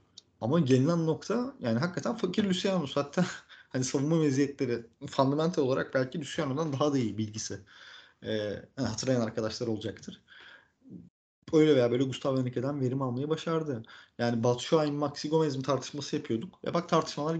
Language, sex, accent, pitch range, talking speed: Turkish, male, native, 115-160 Hz, 140 wpm